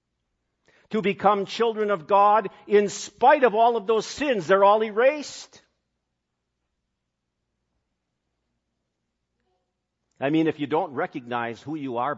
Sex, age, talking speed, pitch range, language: male, 50-69, 120 wpm, 115-175 Hz, English